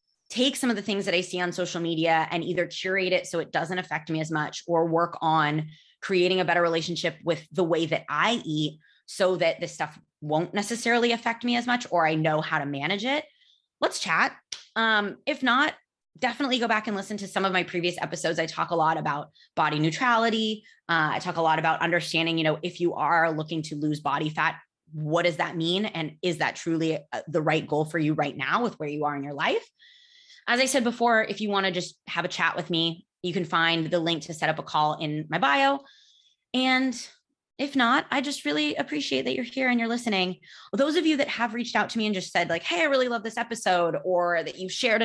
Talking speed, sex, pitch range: 235 wpm, female, 160-220 Hz